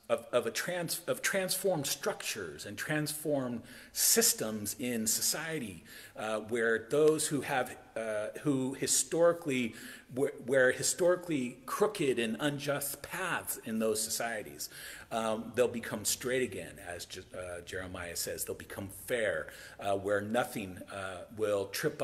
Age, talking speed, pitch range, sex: 40-59, 135 wpm, 105-140 Hz, male